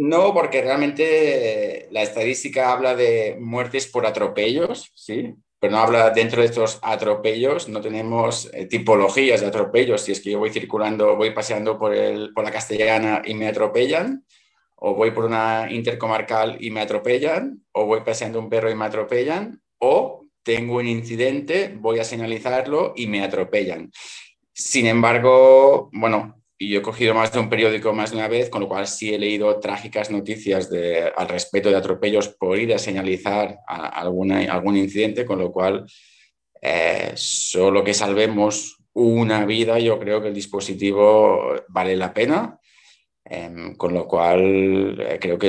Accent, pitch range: Spanish, 105-120 Hz